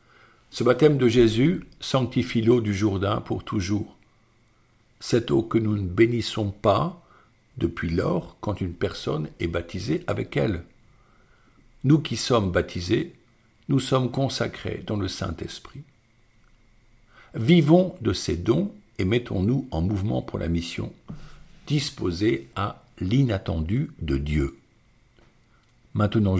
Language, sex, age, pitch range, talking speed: French, male, 60-79, 95-120 Hz, 120 wpm